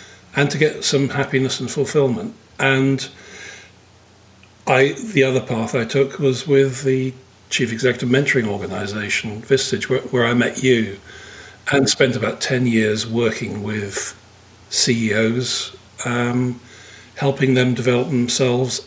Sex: male